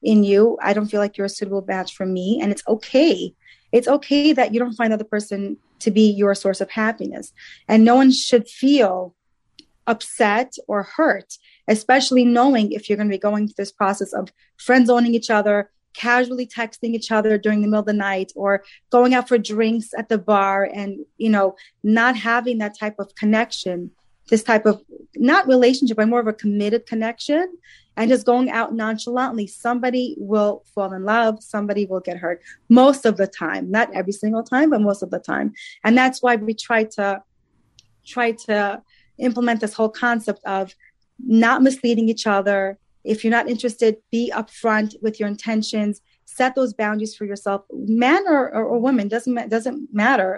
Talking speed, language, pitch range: 185 wpm, English, 205-245 Hz